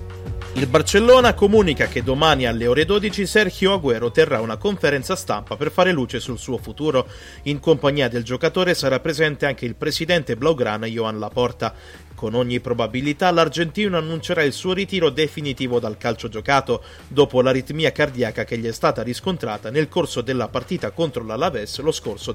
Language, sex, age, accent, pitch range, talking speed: Italian, male, 30-49, native, 120-165 Hz, 160 wpm